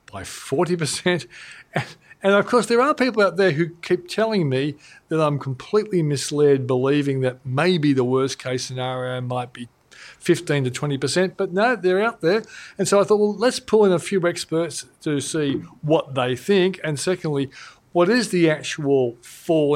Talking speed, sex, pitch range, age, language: 175 wpm, male, 130-175 Hz, 40-59, English